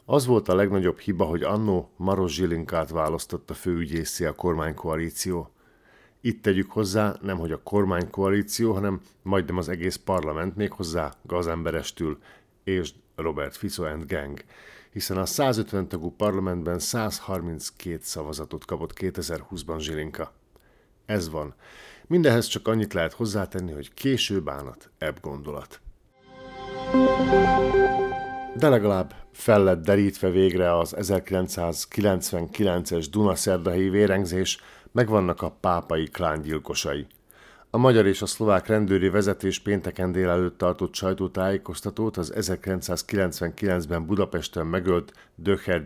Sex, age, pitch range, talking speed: male, 50-69, 85-100 Hz, 115 wpm